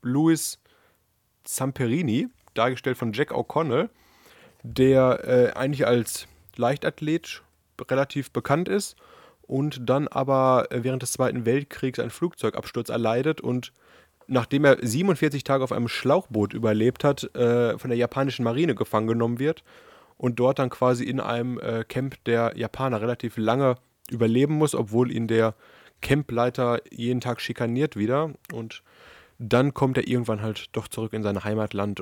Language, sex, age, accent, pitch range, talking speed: German, male, 20-39, German, 110-135 Hz, 140 wpm